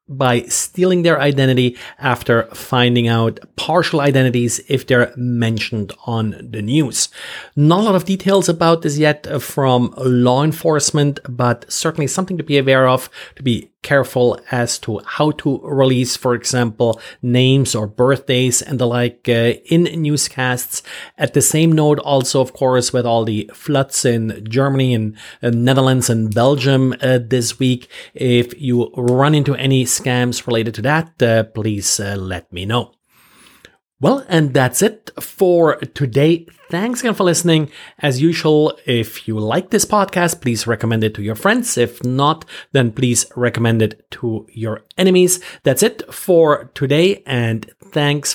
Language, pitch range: English, 120-155 Hz